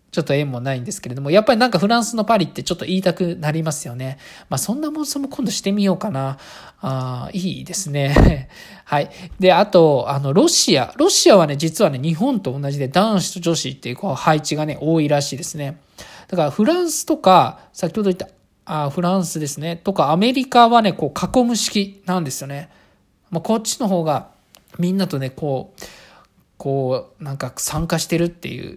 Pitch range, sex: 150-200 Hz, male